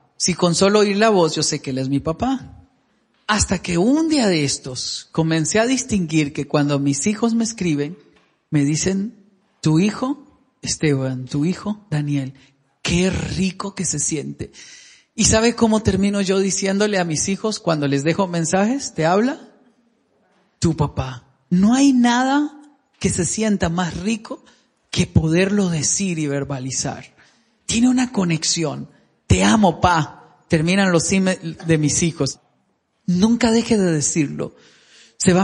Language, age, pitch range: Spanish, 40-59, 160-235 Hz